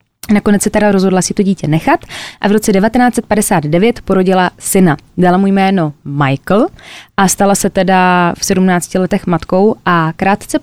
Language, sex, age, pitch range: Czech, female, 20-39, 180-220 Hz